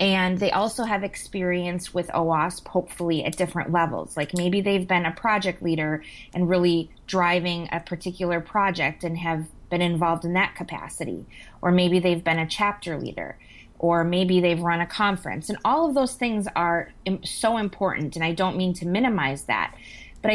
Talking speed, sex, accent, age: 175 wpm, female, American, 20-39